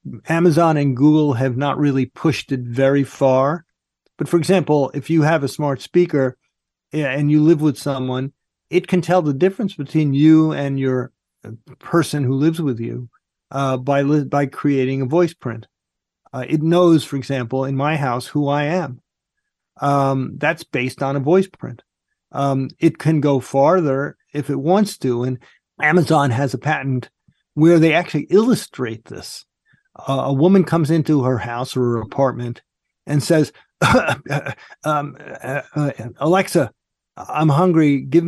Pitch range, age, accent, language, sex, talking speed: 135-160 Hz, 40-59, American, English, male, 155 wpm